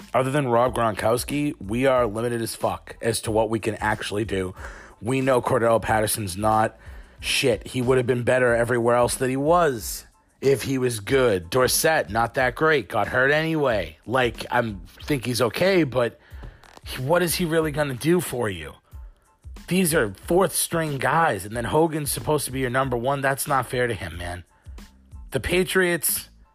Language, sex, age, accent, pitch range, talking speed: English, male, 30-49, American, 115-155 Hz, 180 wpm